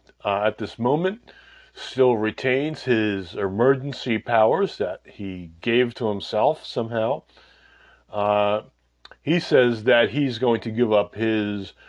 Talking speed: 125 wpm